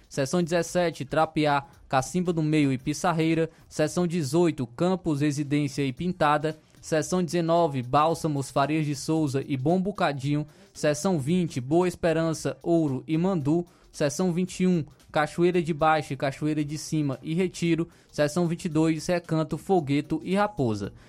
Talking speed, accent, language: 135 wpm, Brazilian, Portuguese